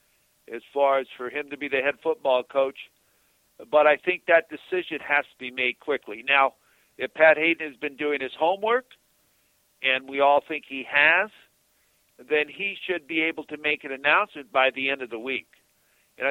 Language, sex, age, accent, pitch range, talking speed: English, male, 50-69, American, 125-150 Hz, 190 wpm